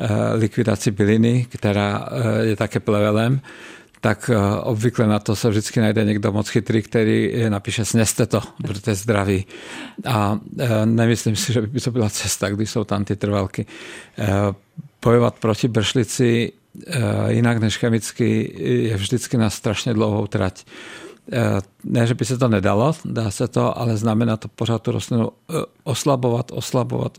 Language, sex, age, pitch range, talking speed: Czech, male, 50-69, 105-120 Hz, 140 wpm